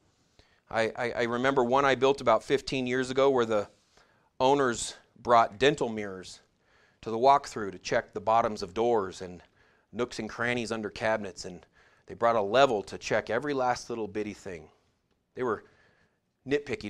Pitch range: 110-140 Hz